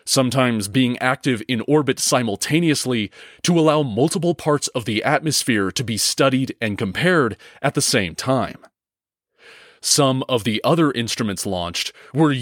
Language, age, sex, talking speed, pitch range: English, 30-49, male, 140 wpm, 115-155 Hz